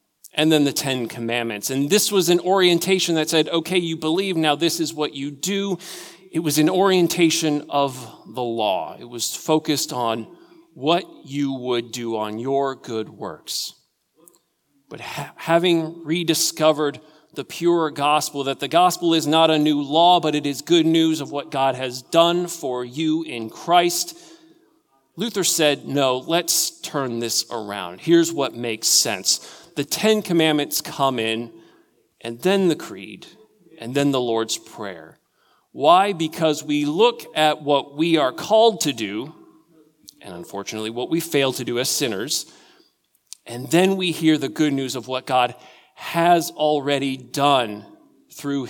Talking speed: 155 wpm